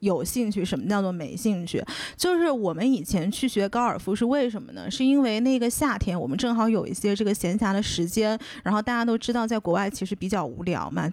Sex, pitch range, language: female, 200-255 Hz, Chinese